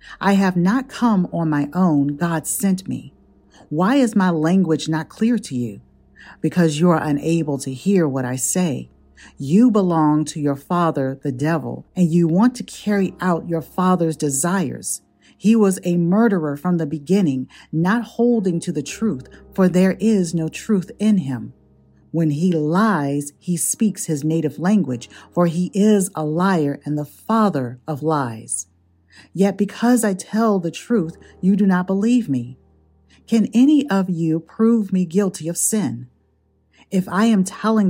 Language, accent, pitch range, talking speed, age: English, American, 140-190 Hz, 165 wpm, 50-69